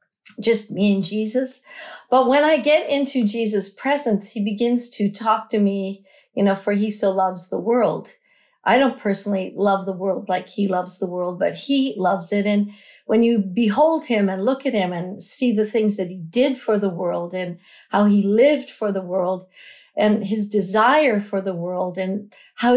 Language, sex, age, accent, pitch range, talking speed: English, female, 50-69, American, 195-245 Hz, 195 wpm